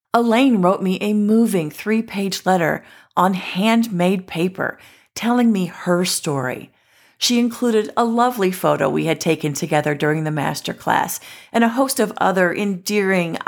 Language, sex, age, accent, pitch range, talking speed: English, female, 40-59, American, 170-215 Hz, 140 wpm